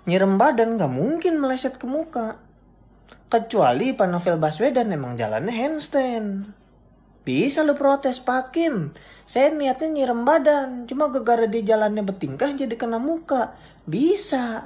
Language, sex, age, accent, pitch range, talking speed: Indonesian, male, 20-39, native, 200-295 Hz, 125 wpm